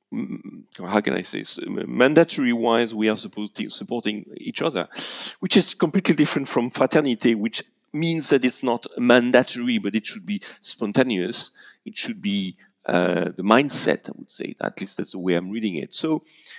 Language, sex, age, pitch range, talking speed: English, male, 40-59, 105-170 Hz, 175 wpm